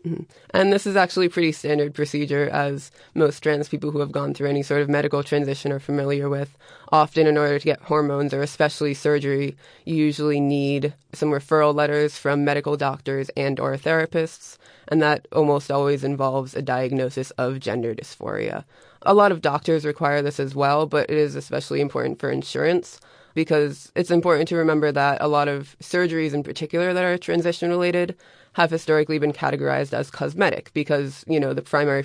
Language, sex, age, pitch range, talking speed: English, female, 20-39, 140-155 Hz, 180 wpm